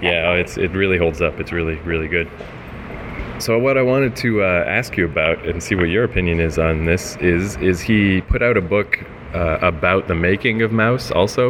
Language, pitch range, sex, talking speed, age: English, 85-105 Hz, male, 215 wpm, 20-39